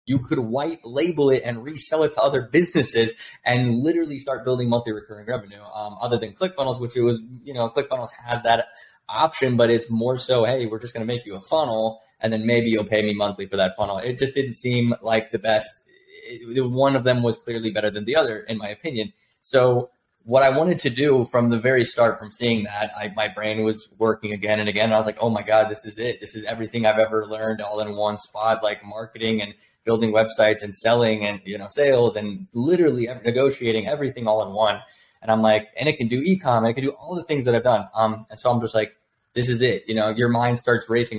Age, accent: 20-39, American